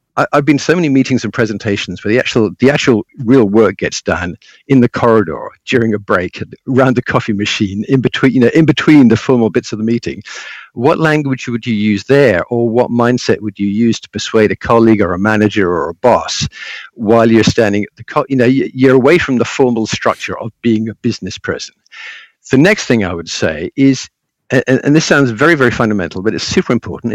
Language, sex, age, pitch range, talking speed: English, male, 50-69, 105-130 Hz, 210 wpm